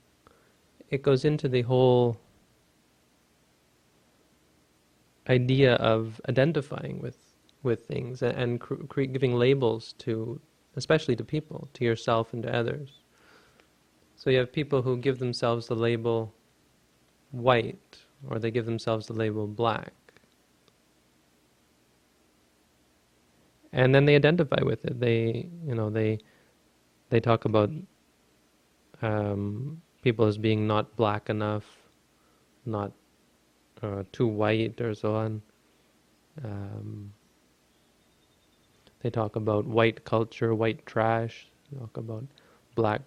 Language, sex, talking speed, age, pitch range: English, male, 110 wpm, 30-49, 100-130 Hz